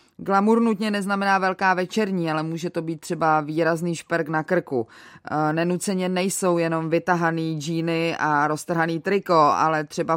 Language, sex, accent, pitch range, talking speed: Czech, female, native, 170-215 Hz, 150 wpm